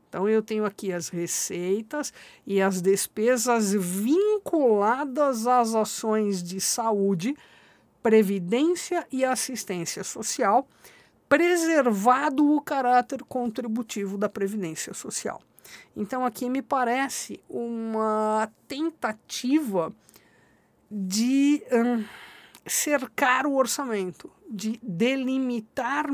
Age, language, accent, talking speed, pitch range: 50-69, Portuguese, Brazilian, 85 wpm, 200-265 Hz